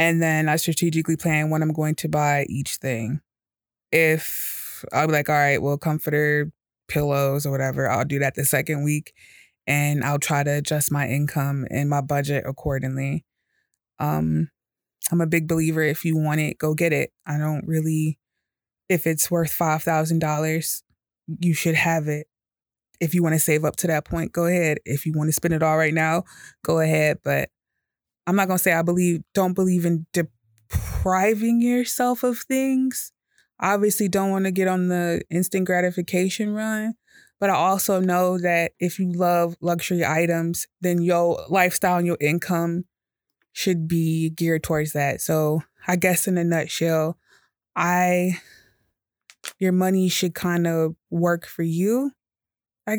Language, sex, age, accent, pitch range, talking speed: English, female, 20-39, American, 150-180 Hz, 170 wpm